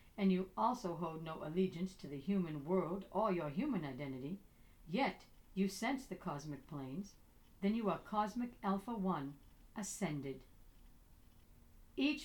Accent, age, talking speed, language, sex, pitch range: American, 60-79, 135 wpm, English, female, 140-205 Hz